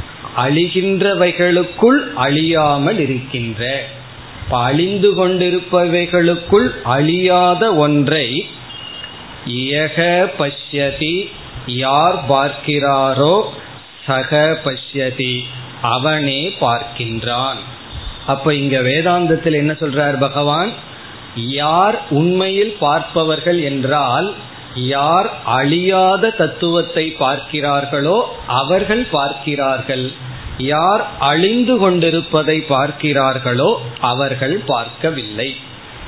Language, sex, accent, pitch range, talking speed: Tamil, male, native, 135-170 Hz, 50 wpm